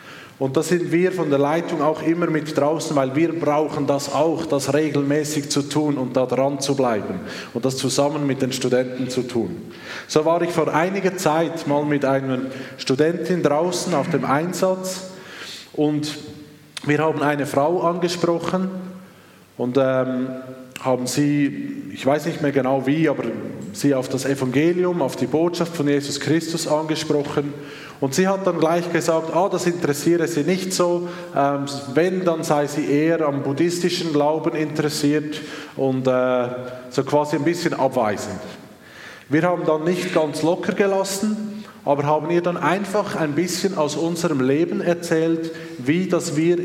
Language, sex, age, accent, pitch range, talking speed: German, male, 20-39, Austrian, 140-170 Hz, 160 wpm